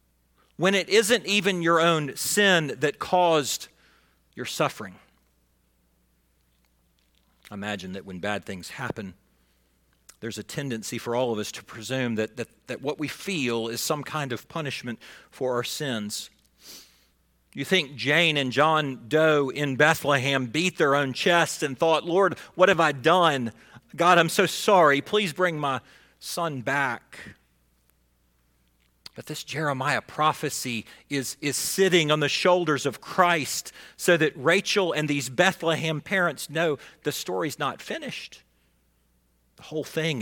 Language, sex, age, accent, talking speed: English, male, 40-59, American, 145 wpm